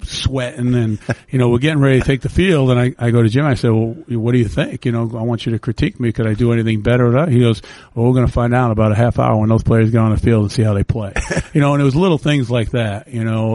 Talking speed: 330 wpm